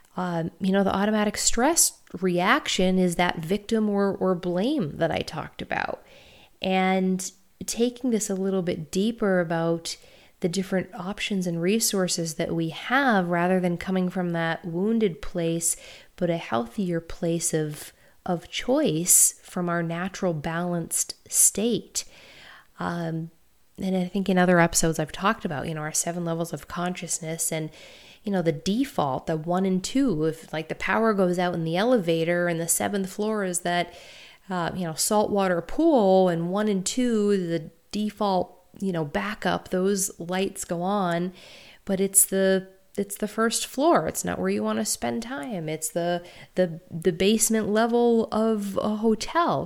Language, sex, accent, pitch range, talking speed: English, female, American, 170-210 Hz, 165 wpm